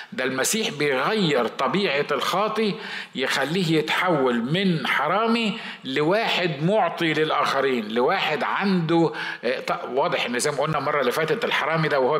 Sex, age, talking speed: male, 50-69, 125 wpm